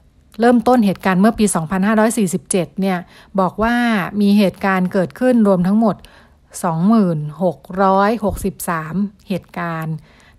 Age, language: 60-79, Thai